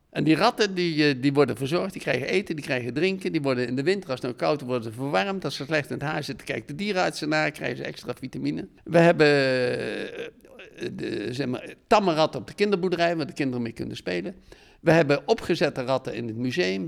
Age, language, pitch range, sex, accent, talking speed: 50-69, Dutch, 140-190 Hz, male, Dutch, 220 wpm